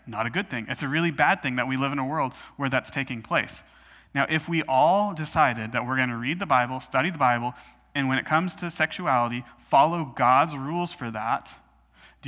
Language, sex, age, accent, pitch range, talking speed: English, male, 30-49, American, 130-155 Hz, 225 wpm